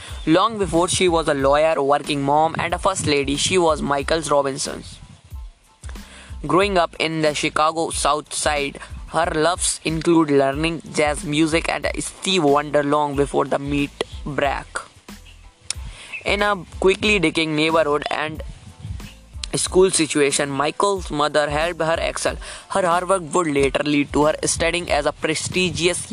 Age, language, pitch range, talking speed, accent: 20-39, English, 145-170 Hz, 140 wpm, Indian